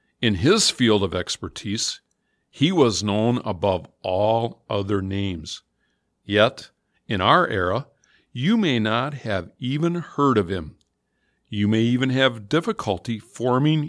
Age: 50-69